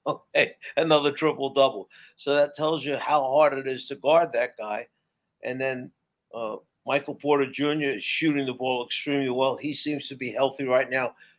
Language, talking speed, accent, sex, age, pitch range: English, 180 wpm, American, male, 50-69, 130-155 Hz